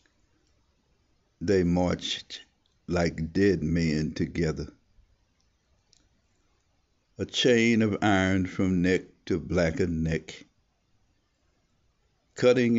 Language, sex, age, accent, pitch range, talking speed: English, male, 60-79, American, 80-100 Hz, 75 wpm